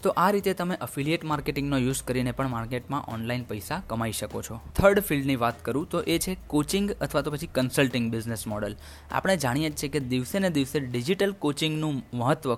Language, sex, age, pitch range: Gujarati, male, 20-39, 125-175 Hz